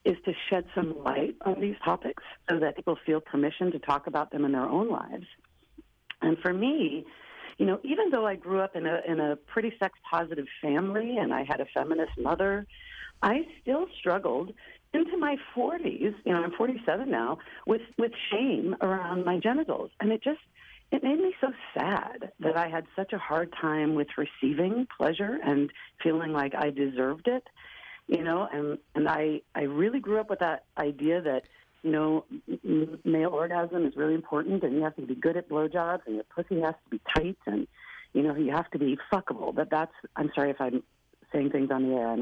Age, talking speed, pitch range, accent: 50-69, 200 wpm, 155-220 Hz, American